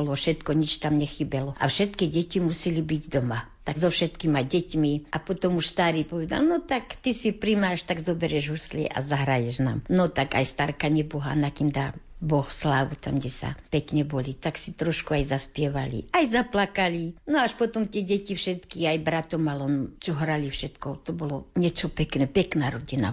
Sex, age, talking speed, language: female, 60-79, 185 wpm, Slovak